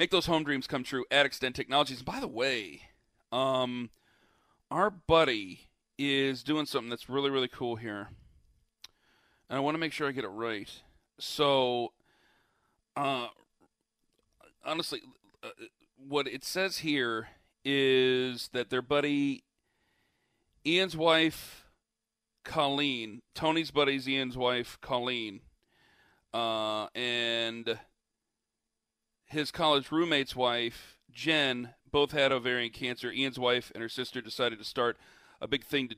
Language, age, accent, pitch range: English, 40-59, American, 120-140 Hz